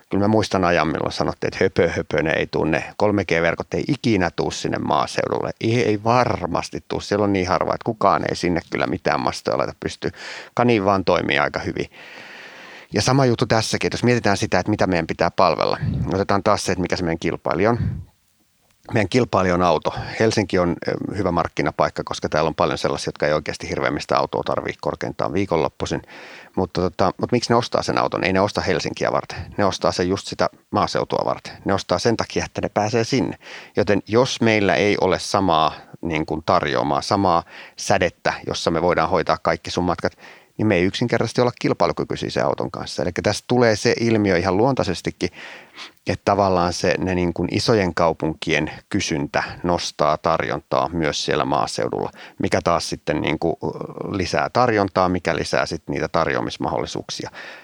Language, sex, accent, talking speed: Finnish, male, native, 175 wpm